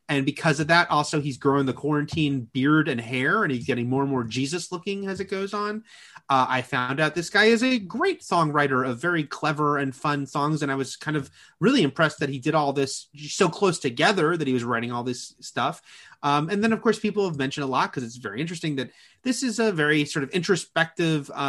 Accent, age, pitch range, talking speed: American, 30-49, 140-190 Hz, 235 wpm